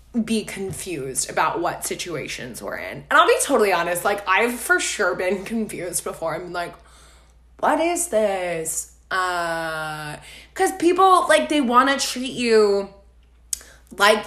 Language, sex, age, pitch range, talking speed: English, female, 20-39, 175-235 Hz, 145 wpm